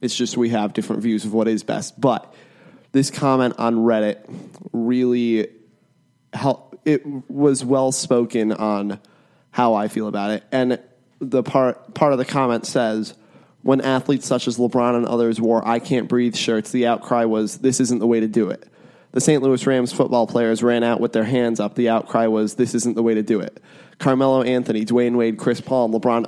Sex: male